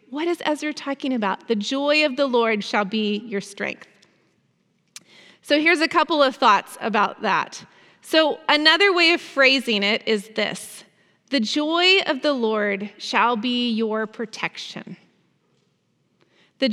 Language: English